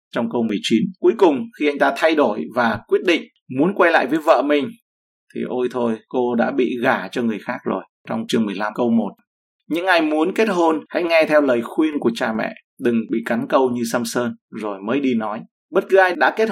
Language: Vietnamese